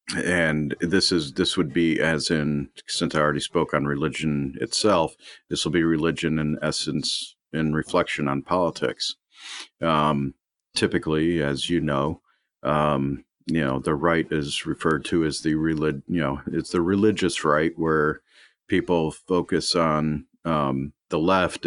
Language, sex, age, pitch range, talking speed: English, male, 40-59, 75-85 Hz, 150 wpm